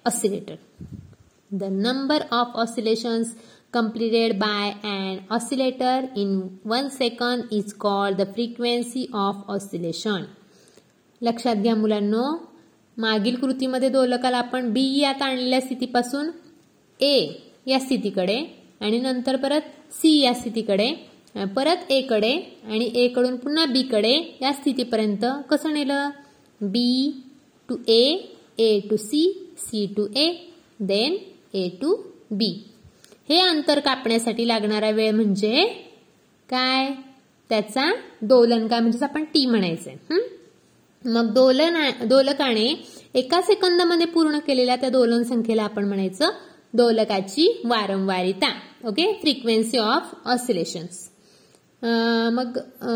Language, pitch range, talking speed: Marathi, 220-280 Hz, 110 wpm